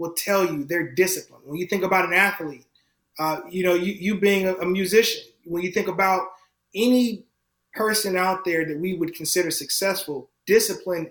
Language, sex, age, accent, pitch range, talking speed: English, male, 30-49, American, 155-195 Hz, 185 wpm